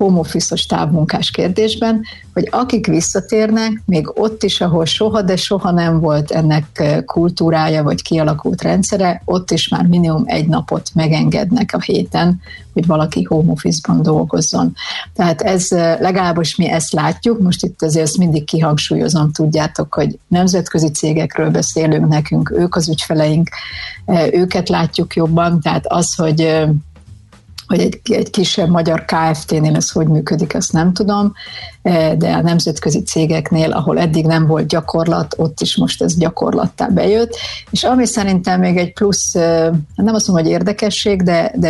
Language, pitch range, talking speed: Hungarian, 160-195 Hz, 145 wpm